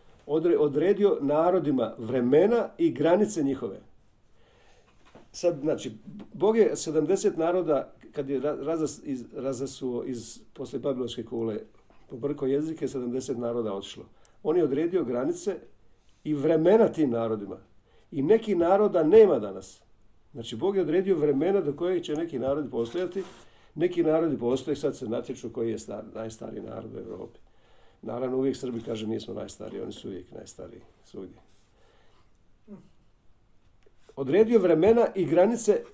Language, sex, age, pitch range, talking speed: Croatian, male, 50-69, 115-175 Hz, 130 wpm